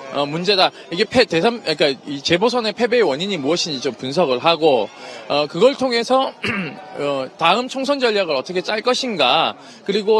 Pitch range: 185-260 Hz